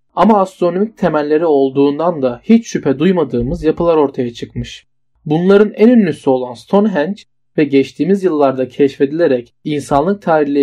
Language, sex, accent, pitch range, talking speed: Turkish, male, native, 135-185 Hz, 125 wpm